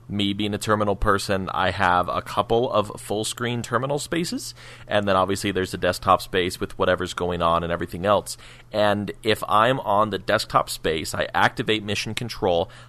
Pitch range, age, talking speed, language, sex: 90-115 Hz, 30-49, 175 wpm, English, male